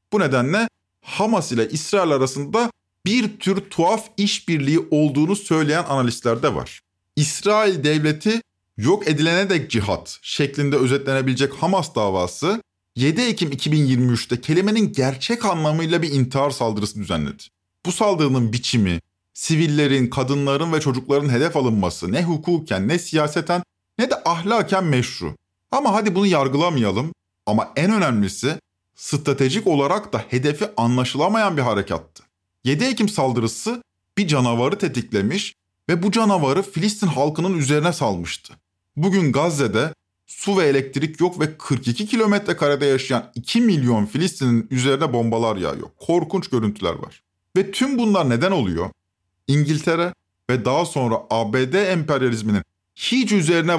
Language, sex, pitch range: Turkish, male, 120-180 Hz